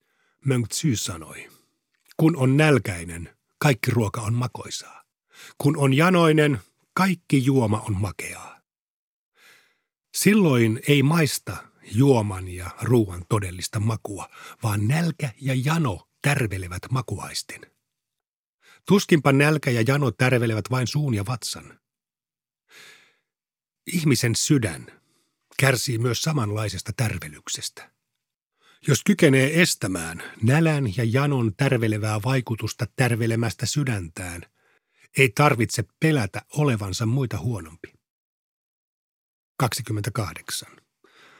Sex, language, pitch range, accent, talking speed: male, Finnish, 105-140 Hz, native, 90 wpm